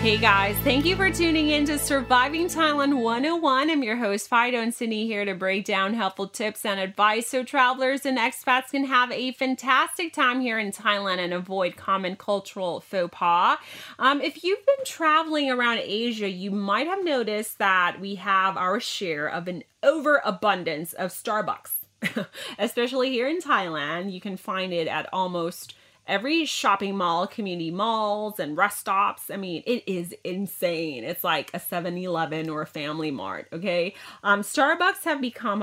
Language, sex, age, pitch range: Thai, female, 30-49, 180-255 Hz